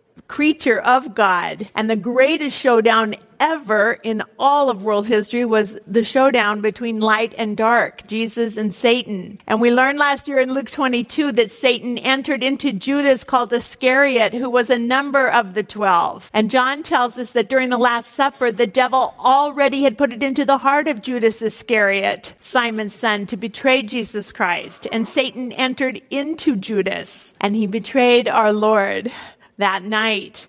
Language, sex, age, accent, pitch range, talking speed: English, female, 50-69, American, 235-270 Hz, 165 wpm